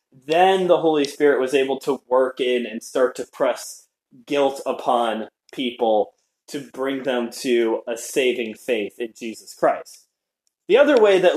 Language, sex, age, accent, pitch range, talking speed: English, male, 20-39, American, 130-195 Hz, 160 wpm